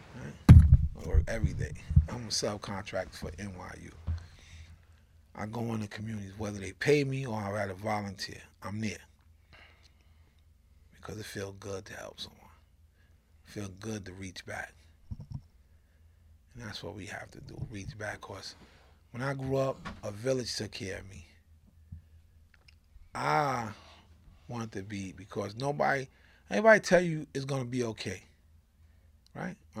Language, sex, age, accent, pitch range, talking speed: English, male, 30-49, American, 80-110 Hz, 140 wpm